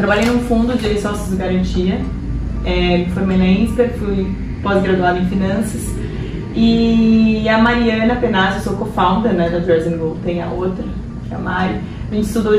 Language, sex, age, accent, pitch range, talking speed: Portuguese, female, 20-39, Brazilian, 195-240 Hz, 165 wpm